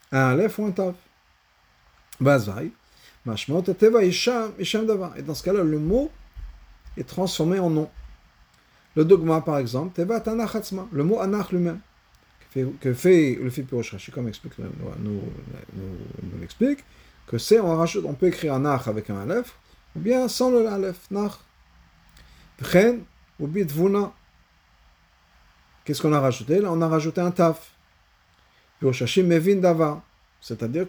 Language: French